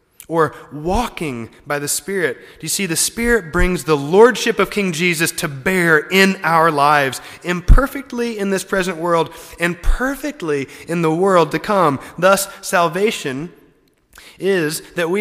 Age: 30-49